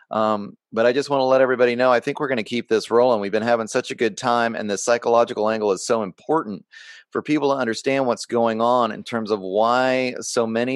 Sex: male